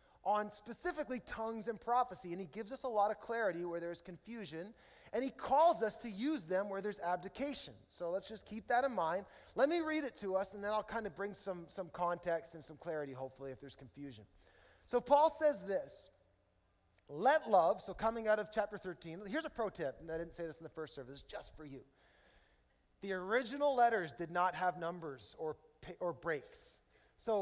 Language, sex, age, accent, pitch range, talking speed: English, male, 30-49, American, 170-235 Hz, 205 wpm